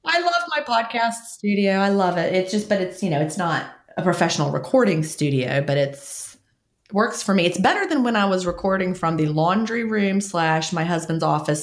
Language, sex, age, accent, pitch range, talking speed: English, female, 30-49, American, 150-195 Hz, 205 wpm